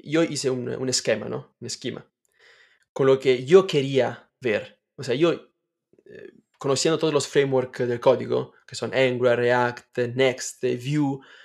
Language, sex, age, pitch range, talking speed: Spanish, male, 20-39, 125-150 Hz, 155 wpm